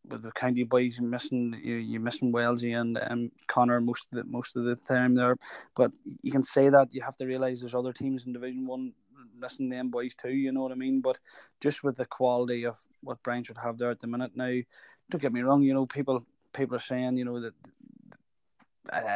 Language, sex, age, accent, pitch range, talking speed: English, male, 20-39, Irish, 120-135 Hz, 235 wpm